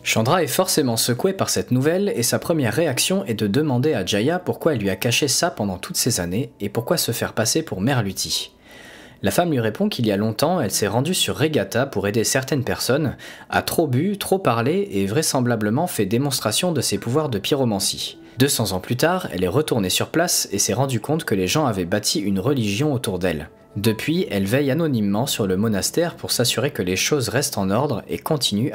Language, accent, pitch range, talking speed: French, French, 105-150 Hz, 215 wpm